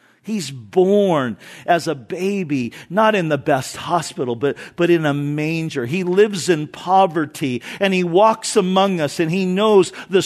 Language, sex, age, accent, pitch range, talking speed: English, male, 50-69, American, 150-205 Hz, 165 wpm